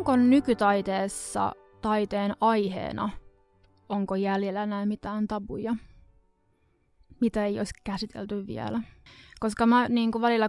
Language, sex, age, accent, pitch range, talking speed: Finnish, female, 20-39, native, 195-220 Hz, 105 wpm